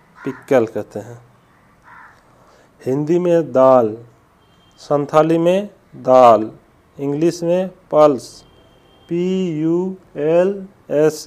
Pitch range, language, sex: 135-170 Hz, Hindi, male